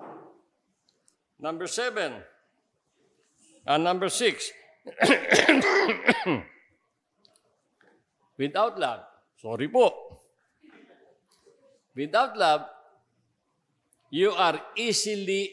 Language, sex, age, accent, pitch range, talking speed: English, male, 50-69, Filipino, 185-230 Hz, 55 wpm